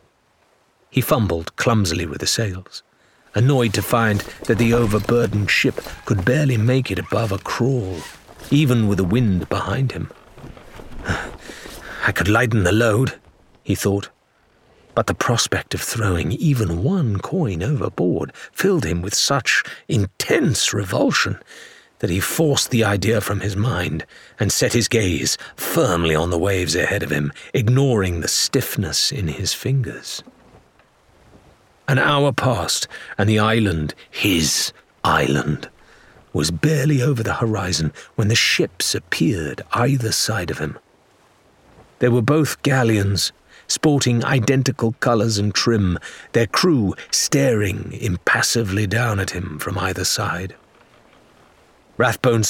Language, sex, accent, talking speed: English, male, British, 130 wpm